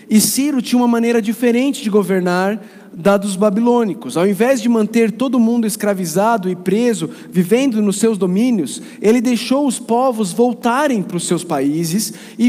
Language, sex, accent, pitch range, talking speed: Portuguese, male, Brazilian, 190-240 Hz, 165 wpm